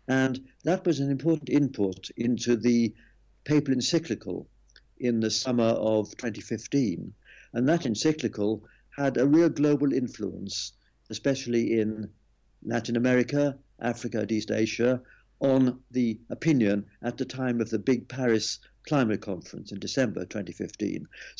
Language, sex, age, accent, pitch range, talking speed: English, male, 60-79, British, 110-125 Hz, 130 wpm